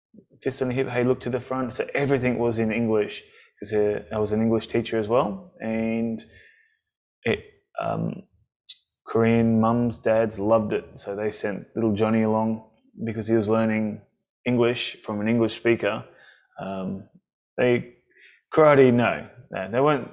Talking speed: 145 wpm